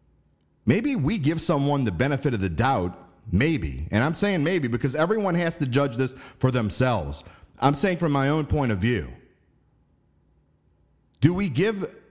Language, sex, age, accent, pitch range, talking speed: English, male, 50-69, American, 90-140 Hz, 165 wpm